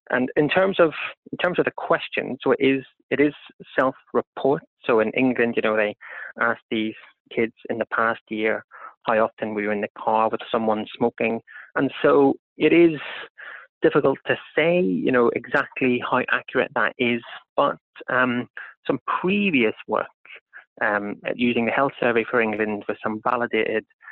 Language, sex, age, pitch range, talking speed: English, male, 30-49, 110-135 Hz, 165 wpm